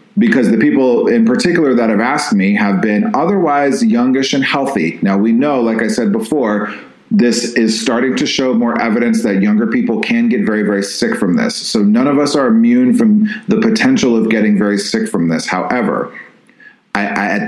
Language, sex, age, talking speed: English, male, 40-59, 190 wpm